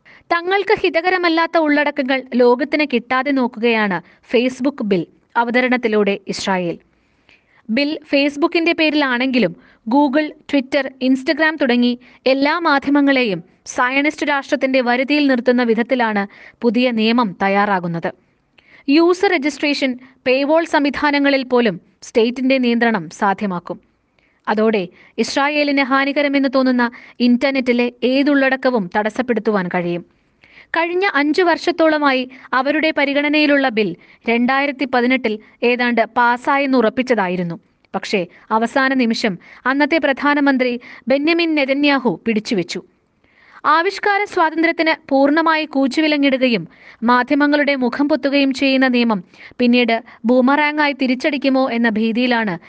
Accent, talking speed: native, 85 wpm